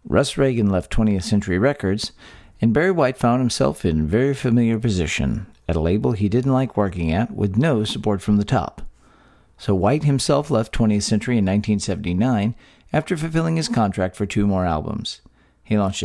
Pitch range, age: 100-125 Hz, 40-59